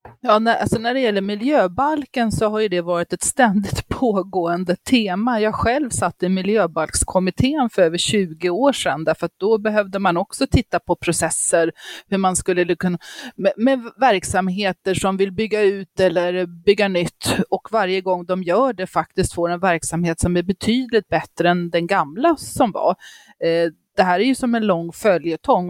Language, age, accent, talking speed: Swedish, 30-49, native, 175 wpm